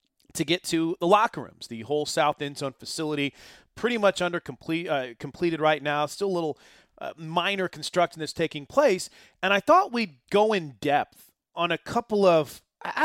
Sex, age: male, 30-49